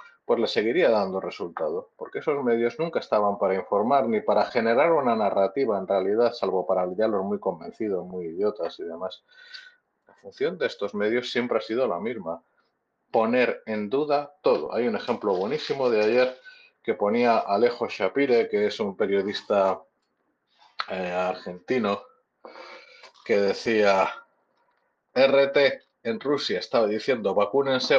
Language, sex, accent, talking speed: Spanish, male, Spanish, 145 wpm